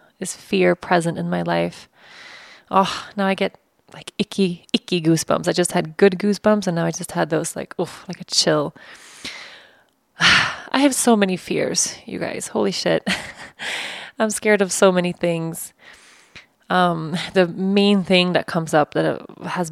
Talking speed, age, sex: 165 wpm, 20-39, female